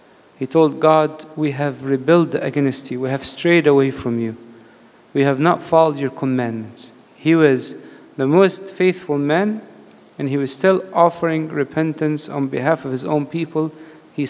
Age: 40-59